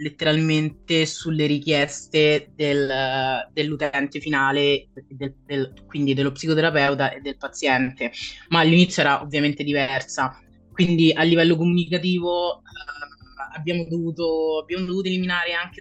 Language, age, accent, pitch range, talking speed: Italian, 20-39, native, 135-160 Hz, 115 wpm